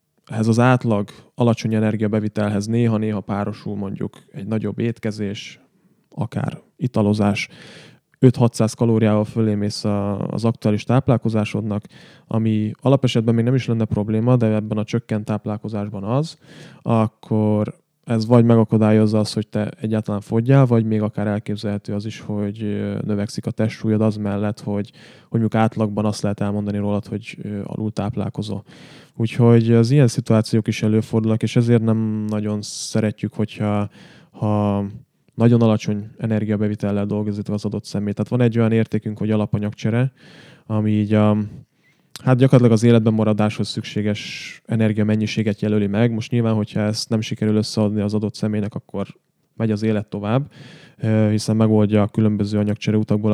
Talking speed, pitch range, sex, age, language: 140 wpm, 105-115 Hz, male, 20-39, Hungarian